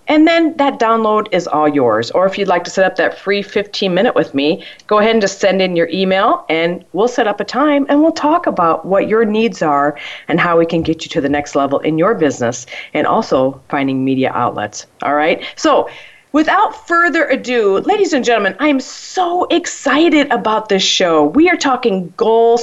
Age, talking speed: 40-59, 210 wpm